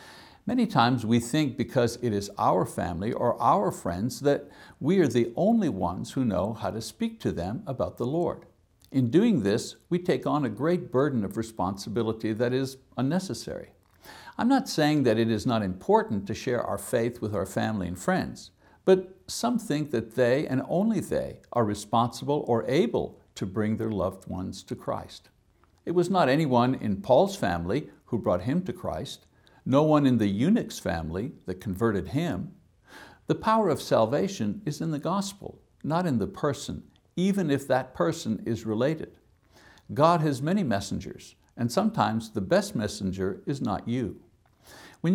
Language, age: English, 60-79